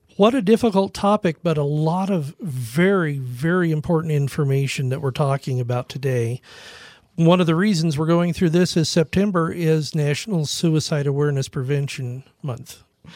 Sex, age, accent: male, 50-69, American